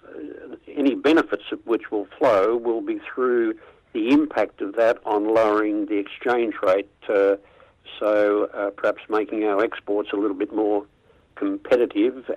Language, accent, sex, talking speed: English, Australian, male, 145 wpm